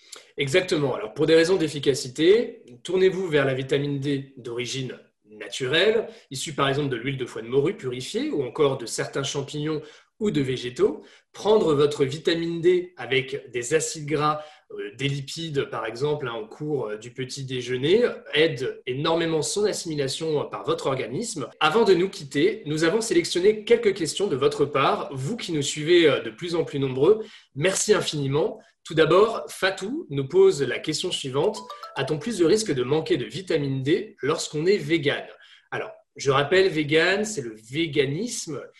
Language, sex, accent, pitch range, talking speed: French, male, French, 140-190 Hz, 160 wpm